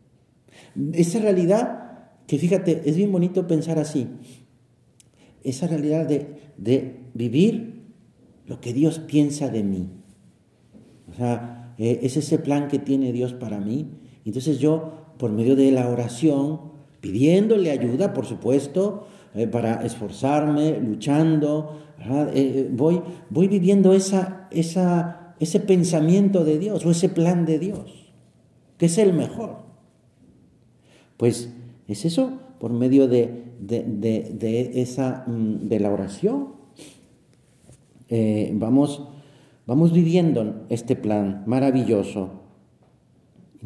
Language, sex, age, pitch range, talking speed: Spanish, male, 50-69, 120-170 Hz, 115 wpm